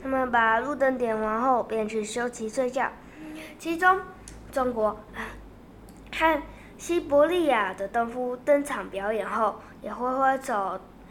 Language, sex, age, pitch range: Chinese, female, 10-29, 225-295 Hz